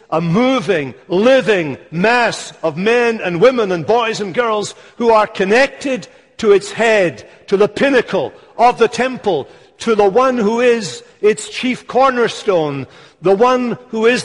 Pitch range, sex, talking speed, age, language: 185-240 Hz, male, 150 wpm, 60-79, English